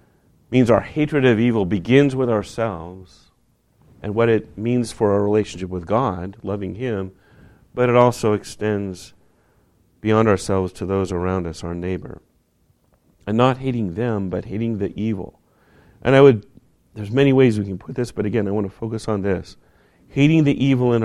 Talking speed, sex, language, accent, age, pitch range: 175 wpm, male, English, American, 40-59, 90-115 Hz